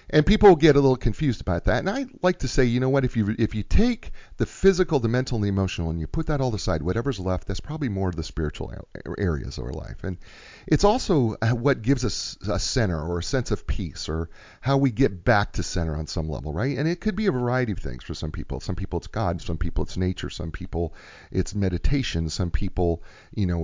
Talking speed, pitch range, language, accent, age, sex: 245 wpm, 85-135 Hz, English, American, 40-59, male